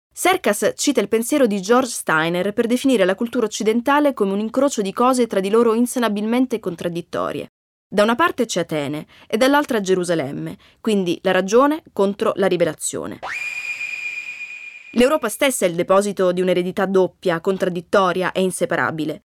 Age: 20-39